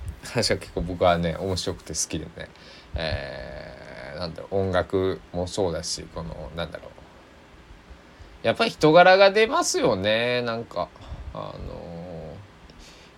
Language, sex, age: Japanese, male, 20-39